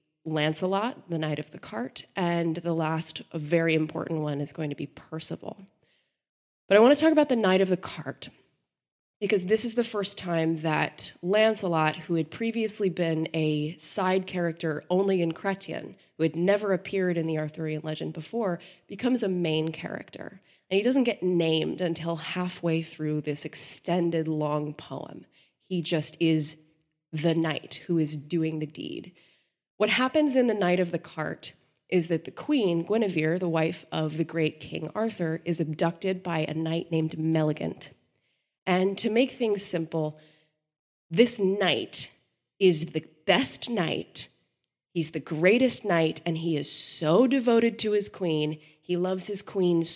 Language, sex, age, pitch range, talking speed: English, female, 20-39, 155-190 Hz, 160 wpm